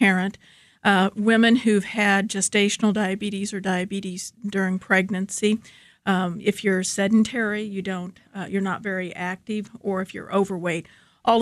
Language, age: English, 50-69